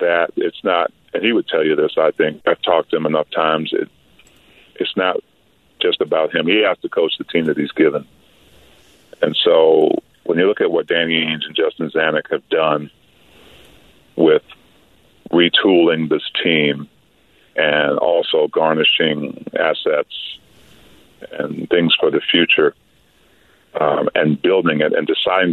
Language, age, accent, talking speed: English, 50-69, American, 150 wpm